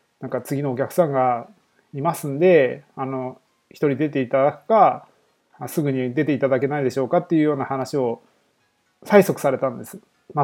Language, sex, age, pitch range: Japanese, male, 20-39, 130-180 Hz